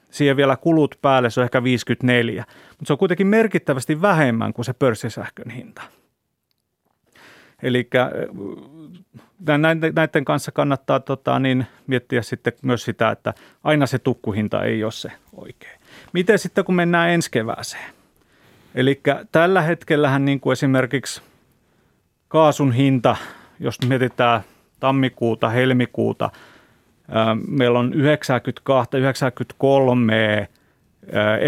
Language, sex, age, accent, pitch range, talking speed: Finnish, male, 30-49, native, 120-145 Hz, 110 wpm